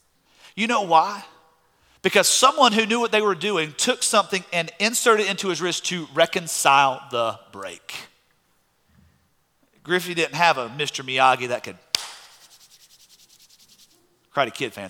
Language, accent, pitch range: English, American, 160-250 Hz